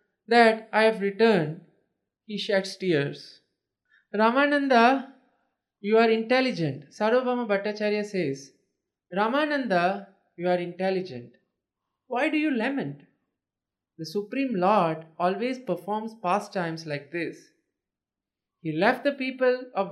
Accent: Indian